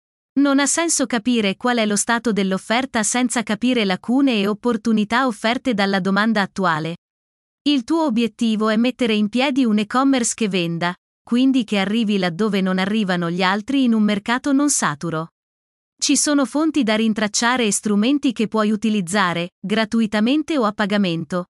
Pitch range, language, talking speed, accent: 205-260 Hz, Italian, 155 wpm, native